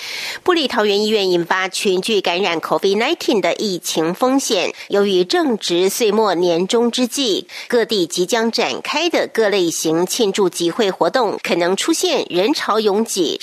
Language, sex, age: Chinese, female, 50-69